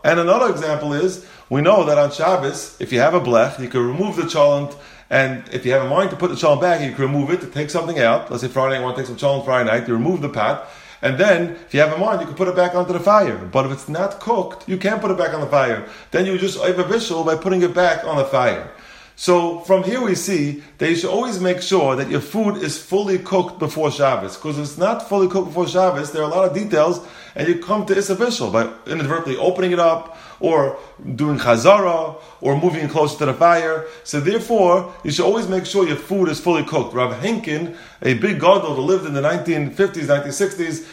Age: 30-49